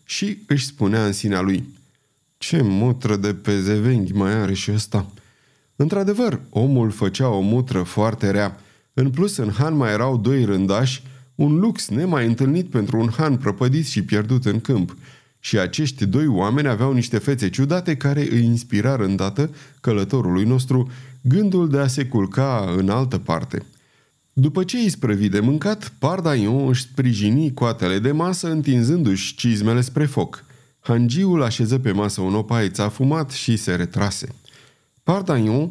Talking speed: 155 wpm